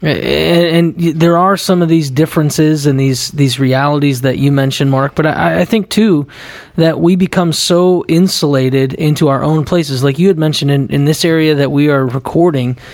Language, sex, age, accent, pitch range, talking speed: English, male, 30-49, American, 140-175 Hz, 195 wpm